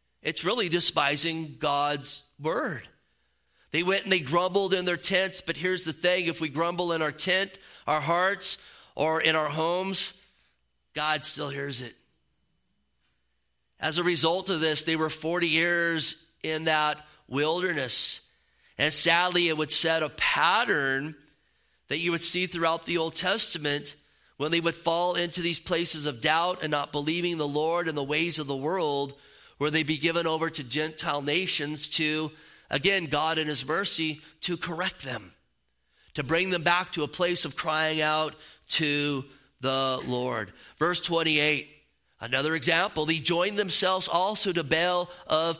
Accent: American